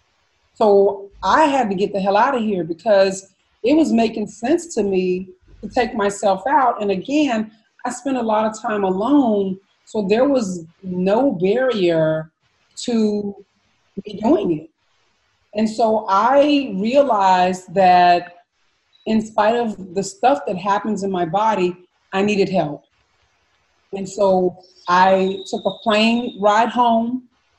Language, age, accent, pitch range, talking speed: English, 40-59, American, 195-230 Hz, 140 wpm